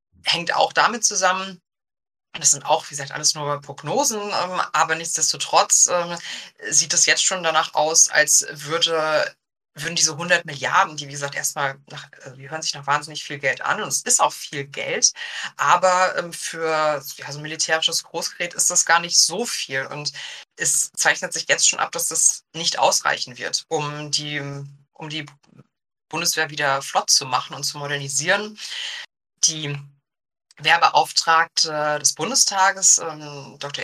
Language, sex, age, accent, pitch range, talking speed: German, female, 20-39, German, 145-170 Hz, 150 wpm